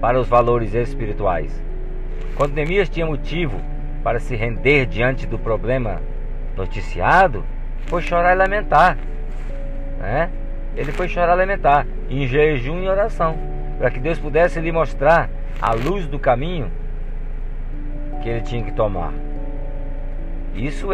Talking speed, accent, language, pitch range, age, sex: 130 wpm, Brazilian, Portuguese, 100-145 Hz, 50-69, male